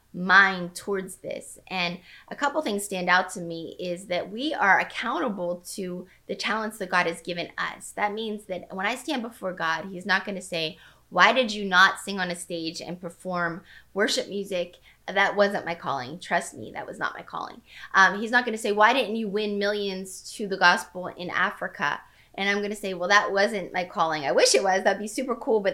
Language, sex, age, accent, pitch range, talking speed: English, female, 20-39, American, 180-215 Hz, 220 wpm